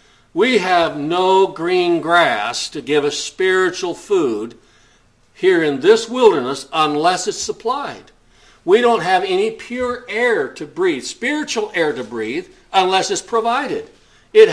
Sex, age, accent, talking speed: male, 60-79, American, 135 wpm